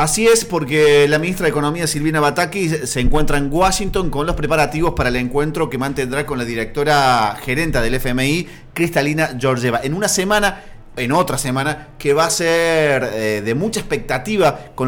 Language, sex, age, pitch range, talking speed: Spanish, male, 30-49, 120-155 Hz, 175 wpm